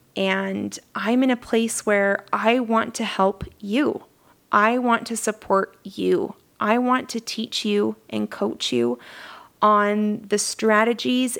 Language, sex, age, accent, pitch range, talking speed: English, female, 20-39, American, 195-230 Hz, 140 wpm